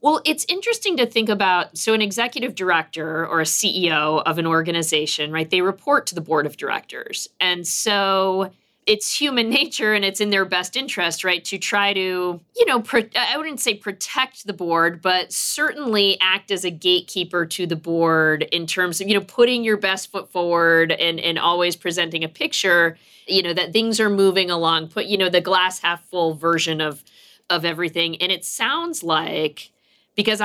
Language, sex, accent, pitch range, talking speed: English, female, American, 170-210 Hz, 190 wpm